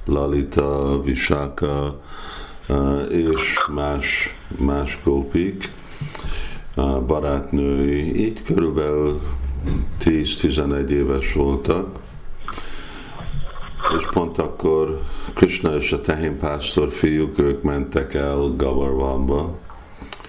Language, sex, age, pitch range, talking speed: Hungarian, male, 50-69, 70-80 Hz, 75 wpm